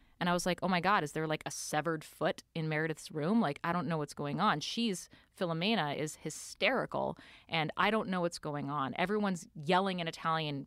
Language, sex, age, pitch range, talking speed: English, female, 30-49, 155-185 Hz, 215 wpm